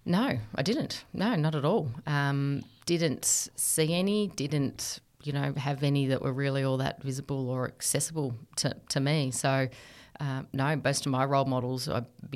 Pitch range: 130-145 Hz